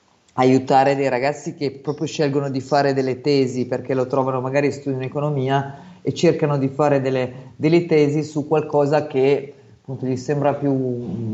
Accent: native